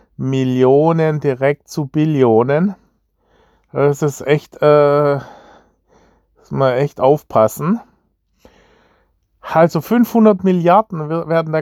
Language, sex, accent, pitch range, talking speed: German, male, German, 145-185 Hz, 90 wpm